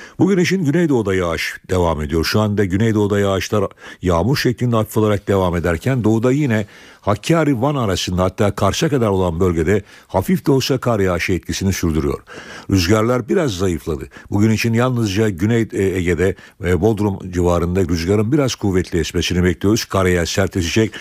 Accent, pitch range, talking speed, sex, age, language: native, 90-120 Hz, 135 wpm, male, 60-79, Turkish